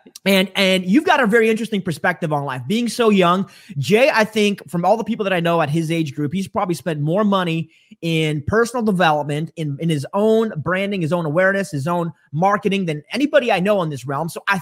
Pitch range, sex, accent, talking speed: 160-215 Hz, male, American, 225 wpm